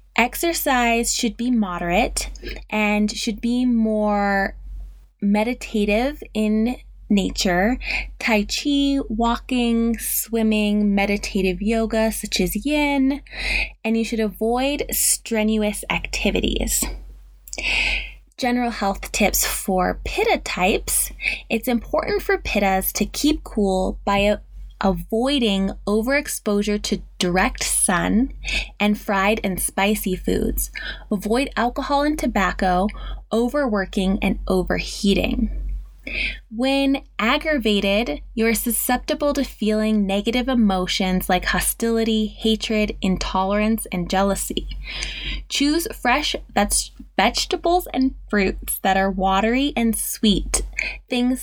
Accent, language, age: American, English, 20-39